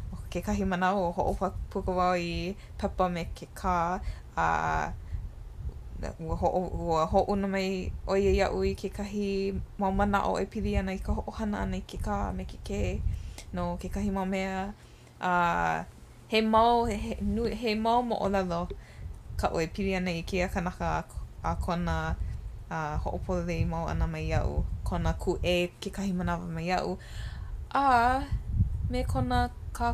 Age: 20-39